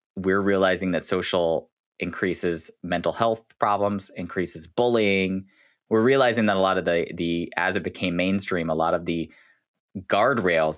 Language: English